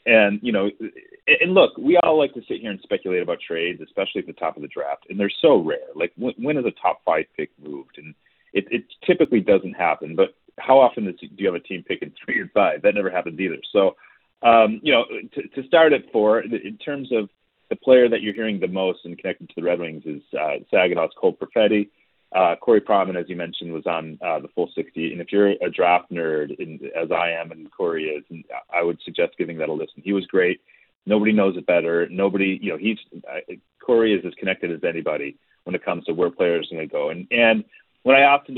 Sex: male